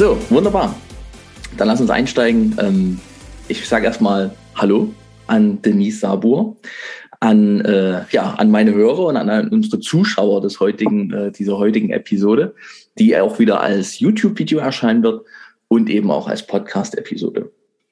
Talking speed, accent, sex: 130 wpm, German, male